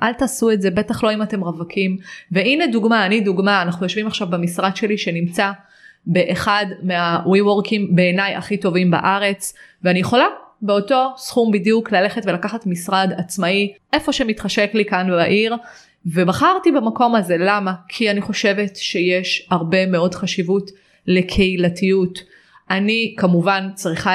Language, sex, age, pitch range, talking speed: Hebrew, female, 20-39, 175-205 Hz, 135 wpm